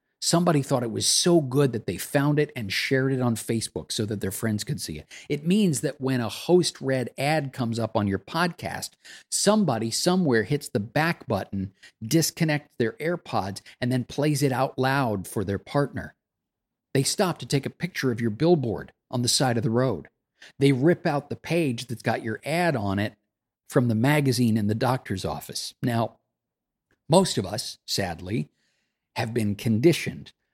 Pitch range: 105-140 Hz